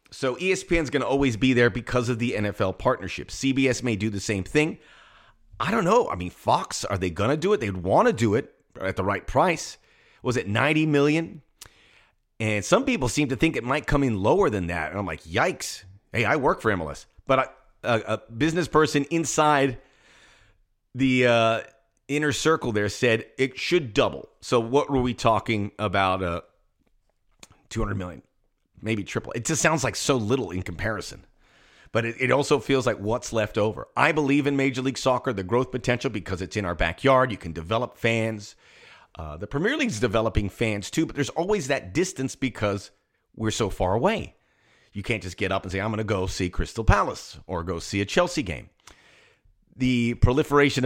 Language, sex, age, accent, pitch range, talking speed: English, male, 30-49, American, 100-140 Hz, 200 wpm